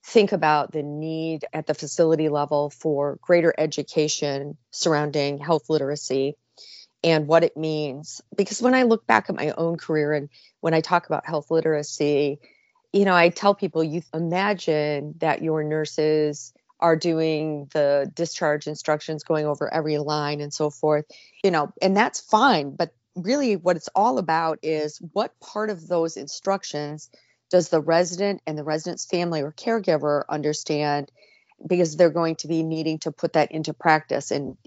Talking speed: 165 wpm